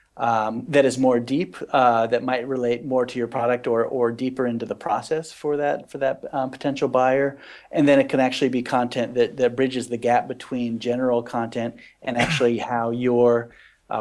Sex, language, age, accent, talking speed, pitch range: male, English, 40-59, American, 195 wpm, 115-135 Hz